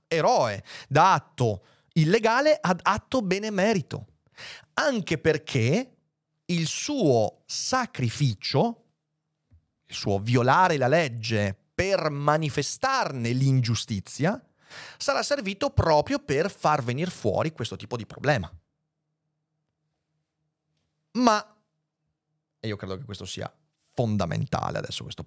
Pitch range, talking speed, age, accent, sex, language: 120-160 Hz, 95 wpm, 40-59, native, male, Italian